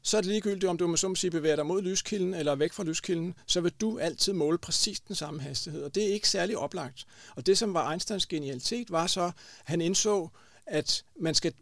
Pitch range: 150-185 Hz